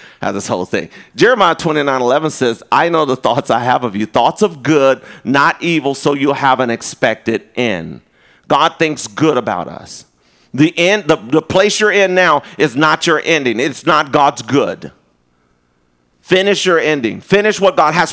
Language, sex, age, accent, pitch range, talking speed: English, male, 40-59, American, 150-210 Hz, 180 wpm